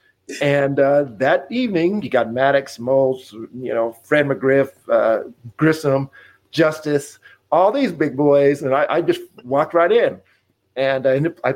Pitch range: 120-155 Hz